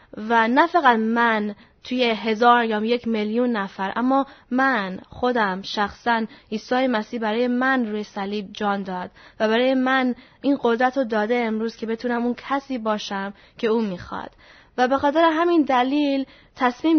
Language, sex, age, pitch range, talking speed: Persian, female, 10-29, 220-260 Hz, 155 wpm